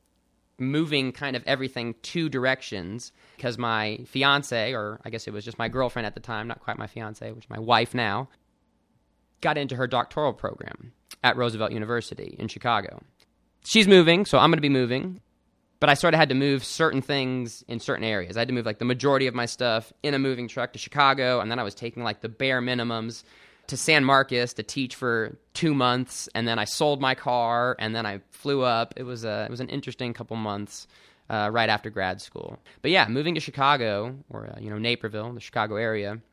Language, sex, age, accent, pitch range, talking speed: English, male, 20-39, American, 110-135 Hz, 215 wpm